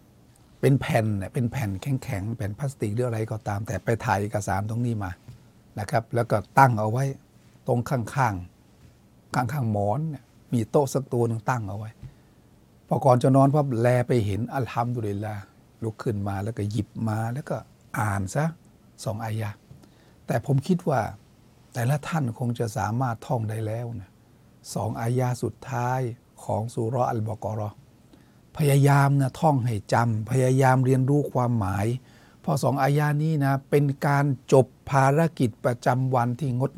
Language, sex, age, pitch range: Thai, male, 60-79, 110-135 Hz